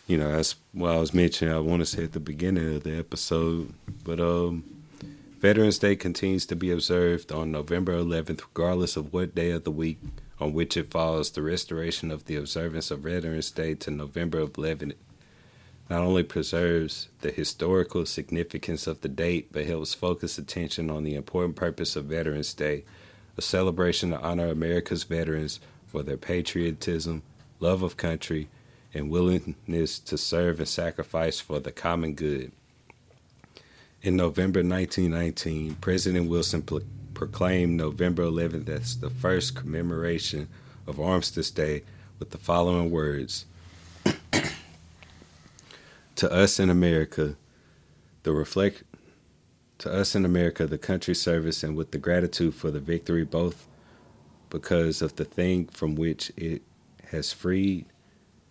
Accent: American